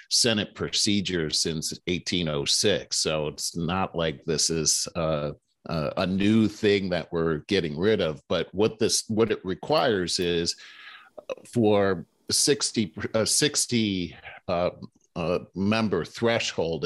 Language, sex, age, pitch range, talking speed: English, male, 50-69, 85-110 Hz, 120 wpm